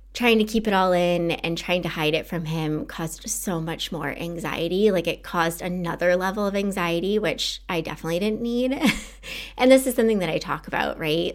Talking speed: 205 wpm